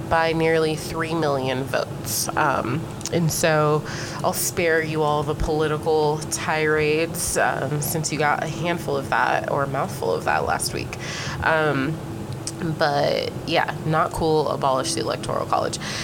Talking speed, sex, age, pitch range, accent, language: 145 wpm, female, 20-39, 150-170 Hz, American, English